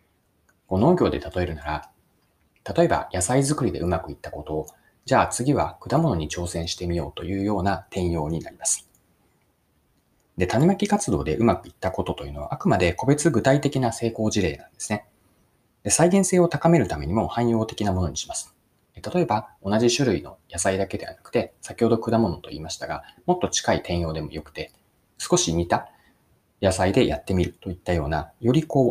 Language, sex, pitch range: Japanese, male, 90-130 Hz